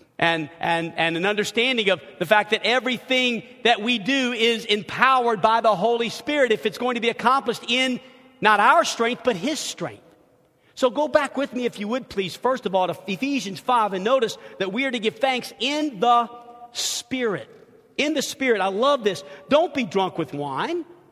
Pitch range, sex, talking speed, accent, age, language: 225-280 Hz, male, 195 wpm, American, 50-69, English